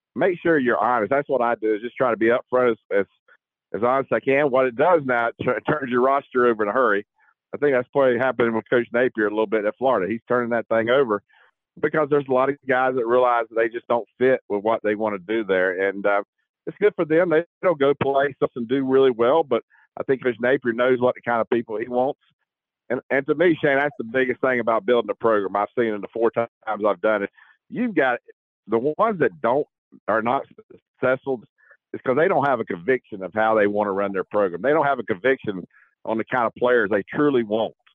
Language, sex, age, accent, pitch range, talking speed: English, male, 50-69, American, 110-135 Hz, 255 wpm